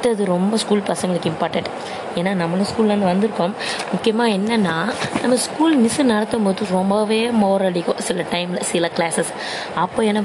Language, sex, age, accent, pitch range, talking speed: Tamil, female, 20-39, native, 180-230 Hz, 140 wpm